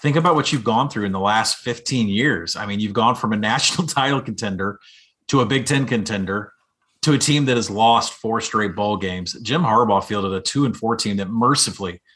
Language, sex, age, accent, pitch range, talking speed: English, male, 30-49, American, 105-135 Hz, 220 wpm